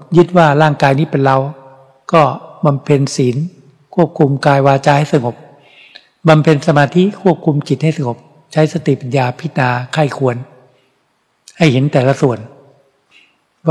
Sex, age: male, 60-79